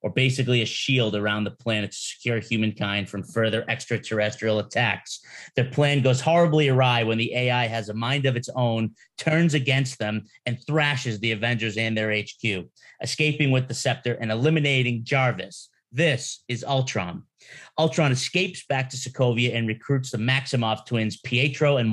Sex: male